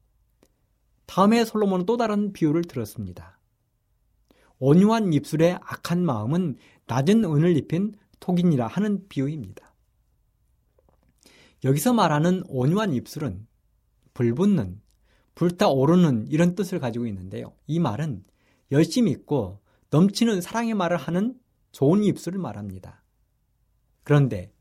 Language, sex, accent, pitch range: Korean, male, native, 110-180 Hz